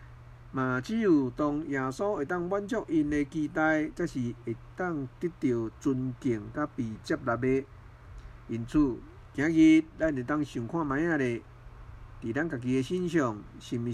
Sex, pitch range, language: male, 115-150 Hz, Chinese